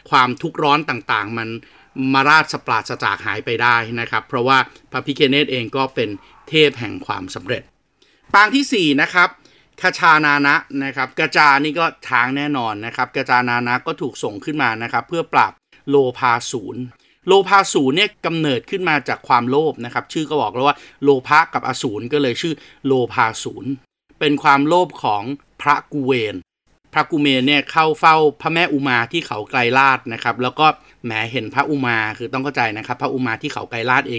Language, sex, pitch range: Thai, male, 125-160 Hz